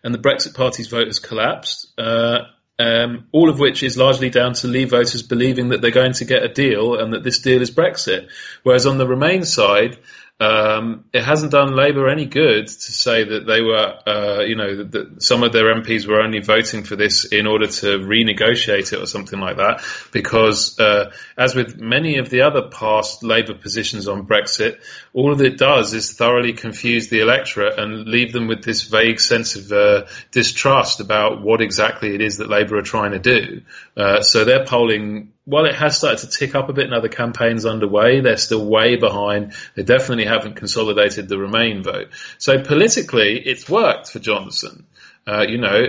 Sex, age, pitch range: male, 30-49, 110-135 Hz